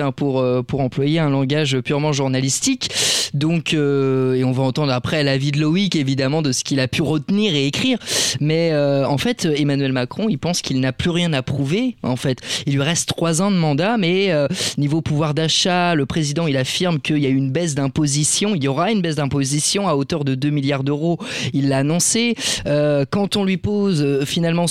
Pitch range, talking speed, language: 135-170 Hz, 210 wpm, French